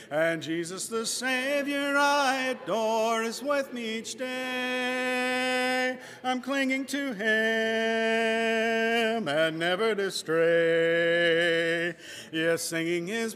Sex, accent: male, American